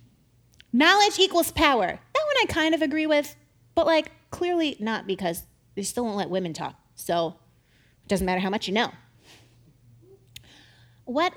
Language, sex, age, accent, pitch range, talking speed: English, female, 30-49, American, 185-310 Hz, 160 wpm